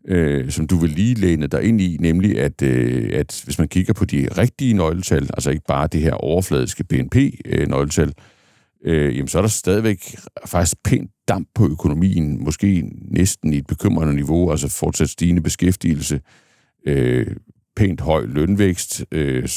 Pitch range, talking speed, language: 75-105 Hz, 170 wpm, Danish